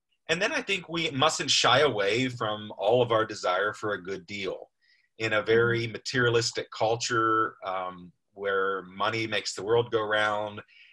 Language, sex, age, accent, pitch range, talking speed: English, male, 30-49, American, 115-155 Hz, 165 wpm